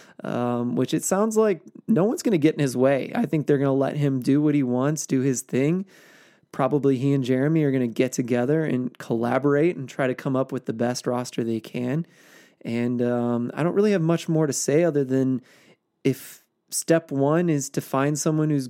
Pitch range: 125-155 Hz